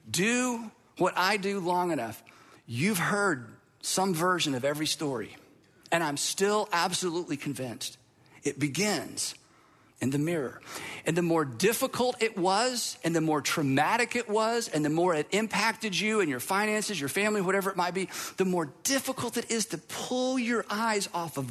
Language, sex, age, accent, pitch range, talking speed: English, male, 40-59, American, 140-200 Hz, 170 wpm